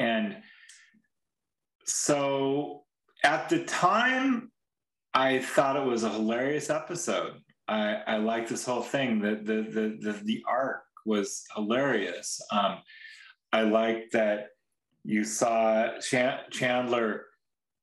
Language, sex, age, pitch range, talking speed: English, male, 40-59, 110-135 Hz, 105 wpm